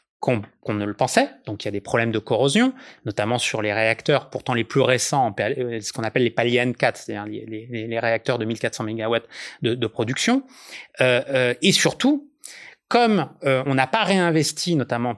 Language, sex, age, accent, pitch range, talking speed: French, male, 30-49, French, 115-155 Hz, 200 wpm